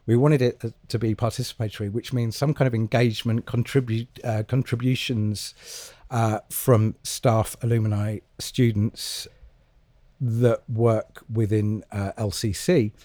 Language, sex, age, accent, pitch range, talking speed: English, male, 40-59, British, 110-130 Hz, 115 wpm